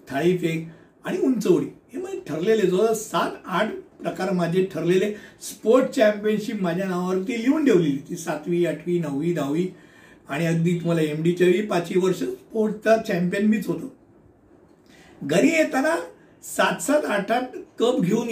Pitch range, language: 170-215 Hz, Hindi